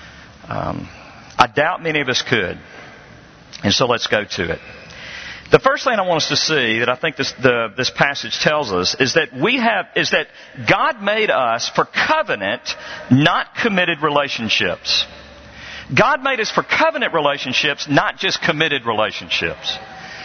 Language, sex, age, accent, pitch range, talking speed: English, male, 50-69, American, 130-180 Hz, 165 wpm